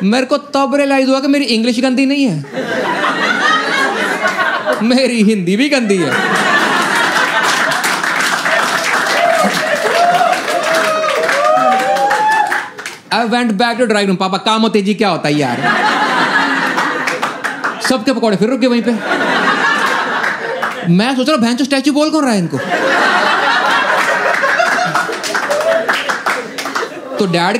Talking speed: 105 wpm